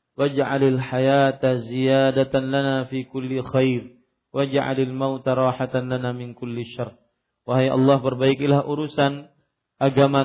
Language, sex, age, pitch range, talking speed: Malay, male, 40-59, 125-135 Hz, 110 wpm